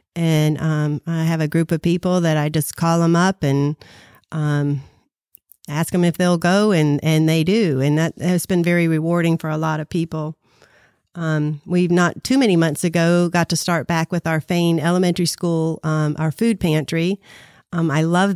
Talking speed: 195 wpm